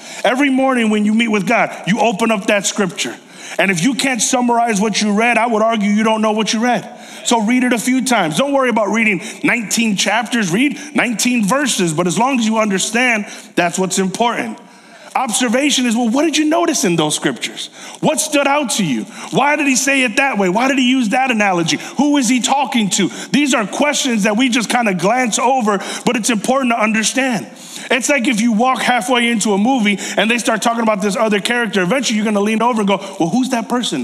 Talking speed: 230 wpm